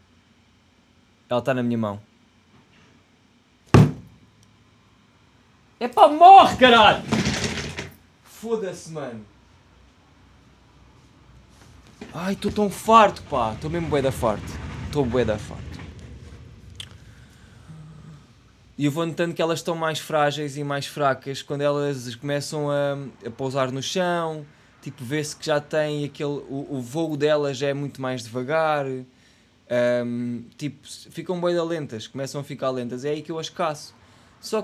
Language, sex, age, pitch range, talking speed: Portuguese, male, 20-39, 115-155 Hz, 125 wpm